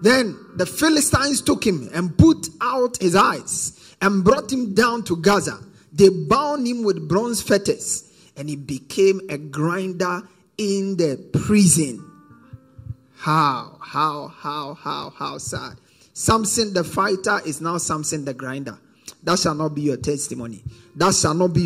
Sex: male